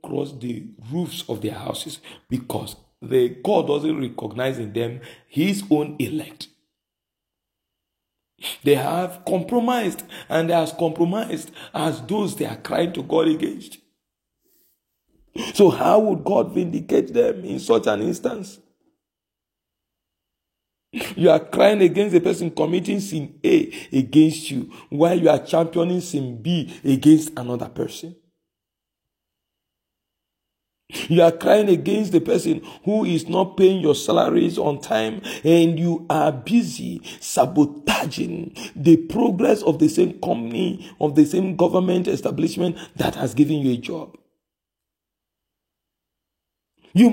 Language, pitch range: English, 130-185 Hz